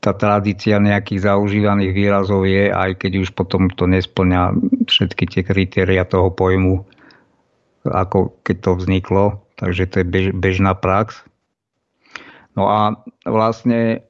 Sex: male